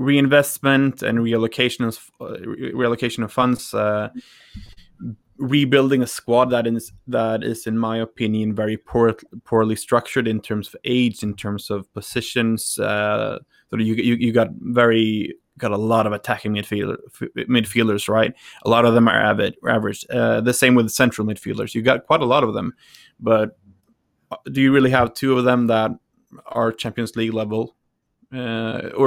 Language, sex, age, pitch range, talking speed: English, male, 20-39, 110-125 Hz, 160 wpm